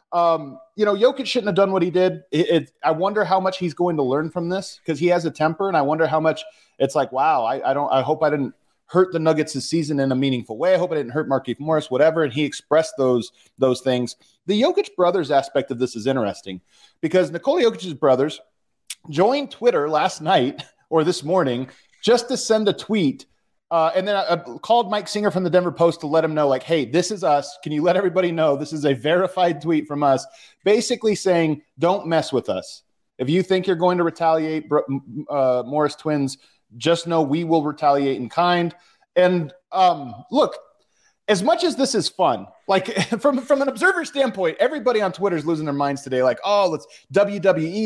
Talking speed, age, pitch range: 215 wpm, 30-49, 150-195 Hz